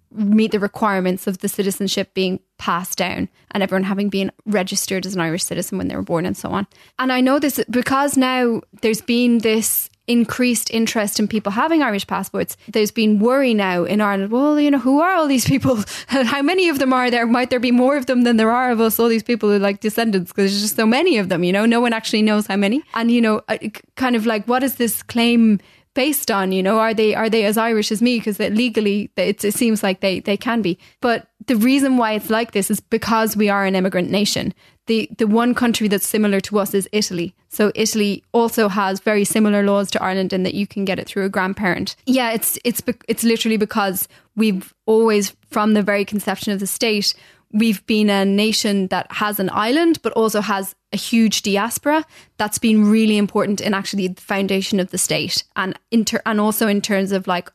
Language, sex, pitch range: English, female, 200-230 Hz